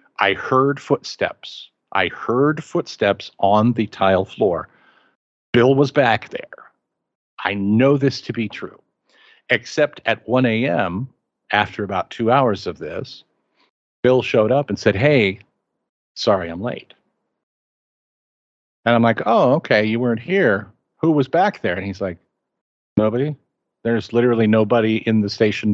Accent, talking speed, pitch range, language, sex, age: American, 140 wpm, 100-130 Hz, English, male, 50-69